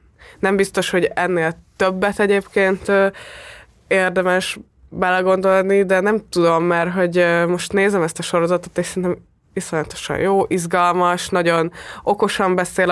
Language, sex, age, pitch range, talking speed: Hungarian, female, 20-39, 165-190 Hz, 120 wpm